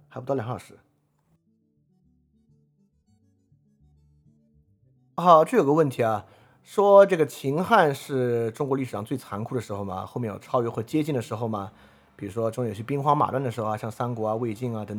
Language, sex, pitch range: Chinese, male, 100-135 Hz